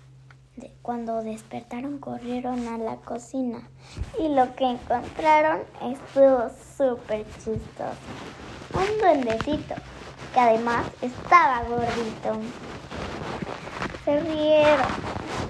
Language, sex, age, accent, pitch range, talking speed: Spanish, male, 20-39, Mexican, 225-285 Hz, 80 wpm